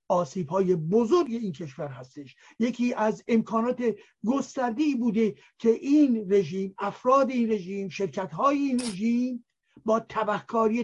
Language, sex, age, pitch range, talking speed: Persian, male, 60-79, 195-230 Hz, 125 wpm